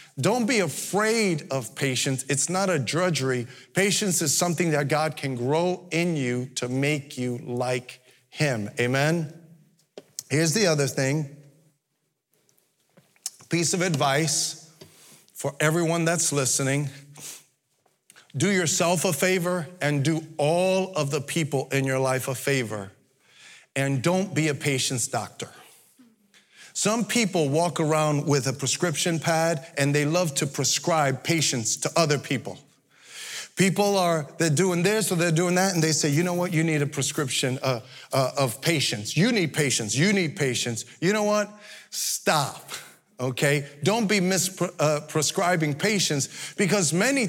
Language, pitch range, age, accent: English, 140-180 Hz, 40-59, American